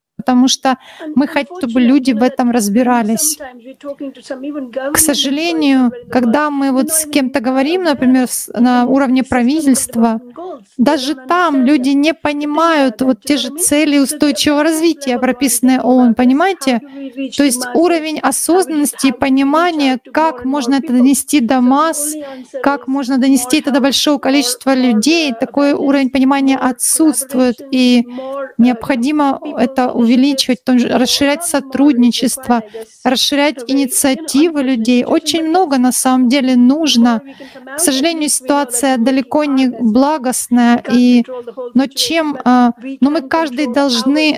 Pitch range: 250-290 Hz